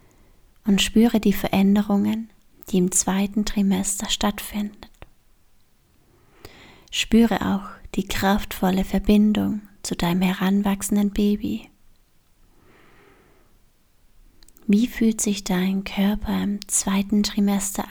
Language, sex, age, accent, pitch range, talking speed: German, female, 30-49, German, 195-220 Hz, 85 wpm